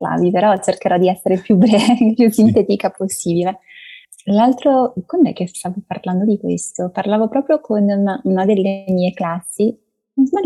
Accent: native